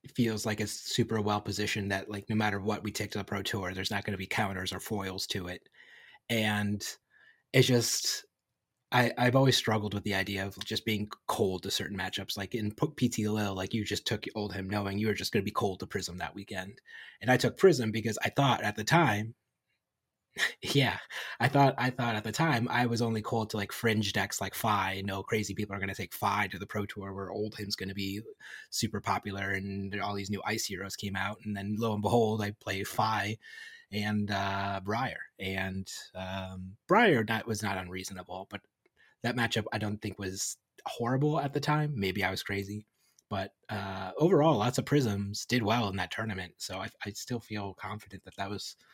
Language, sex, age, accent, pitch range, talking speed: English, male, 30-49, American, 100-110 Hz, 215 wpm